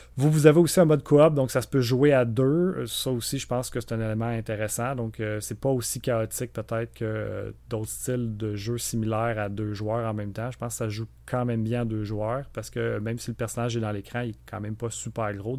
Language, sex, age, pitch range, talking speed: French, male, 30-49, 105-120 Hz, 265 wpm